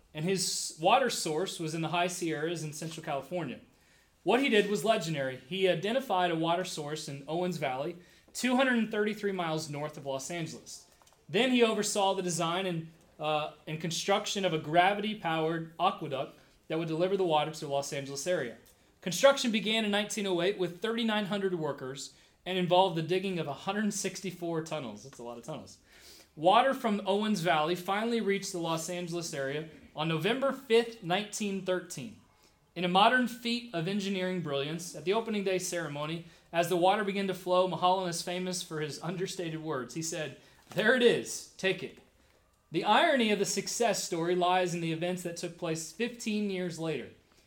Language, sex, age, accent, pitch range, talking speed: English, male, 30-49, American, 160-200 Hz, 170 wpm